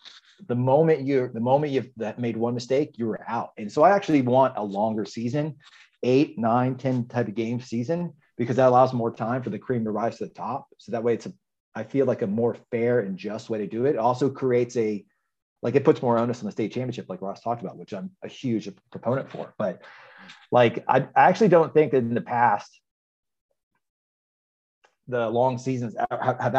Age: 30-49